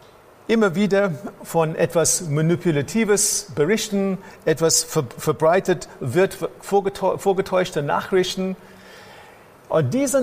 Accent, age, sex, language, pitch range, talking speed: German, 50-69, male, German, 160-205 Hz, 75 wpm